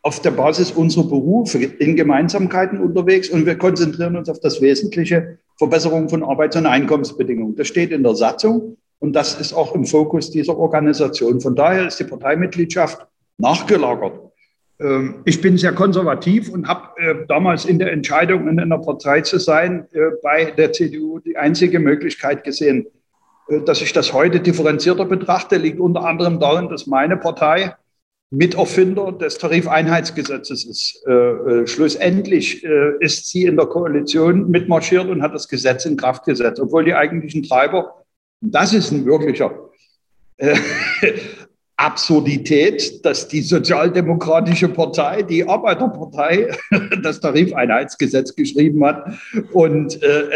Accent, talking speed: German, 140 wpm